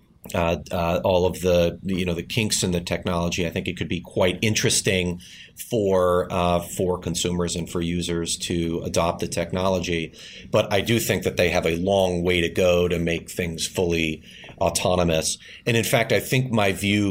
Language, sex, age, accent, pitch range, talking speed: English, male, 30-49, American, 85-95 Hz, 190 wpm